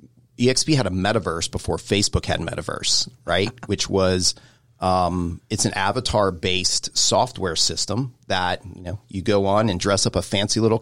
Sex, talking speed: male, 165 wpm